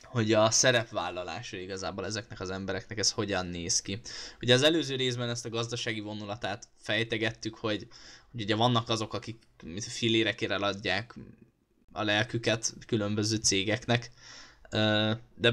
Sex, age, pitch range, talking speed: male, 10-29, 110-120 Hz, 130 wpm